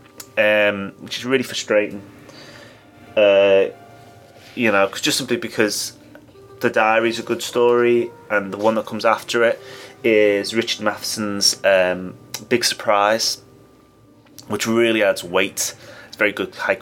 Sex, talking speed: male, 140 wpm